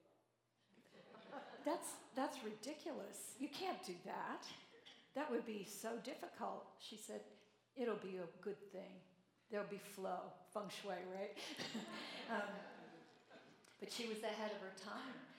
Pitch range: 190-220 Hz